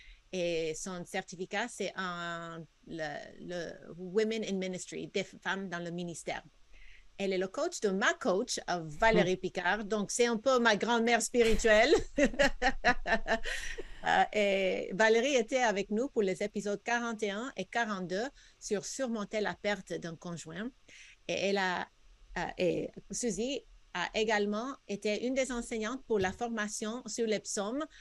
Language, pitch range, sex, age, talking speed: French, 185-235 Hz, female, 50-69, 140 wpm